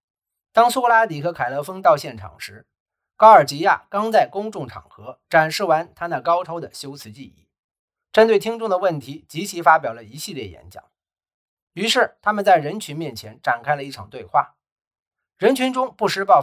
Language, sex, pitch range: Chinese, male, 145-210 Hz